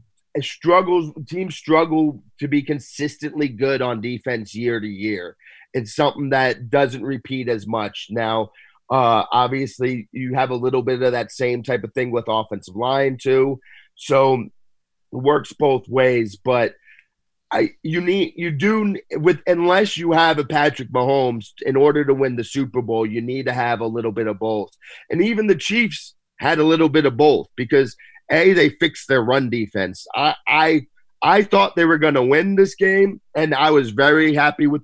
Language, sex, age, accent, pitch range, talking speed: English, male, 30-49, American, 120-155 Hz, 180 wpm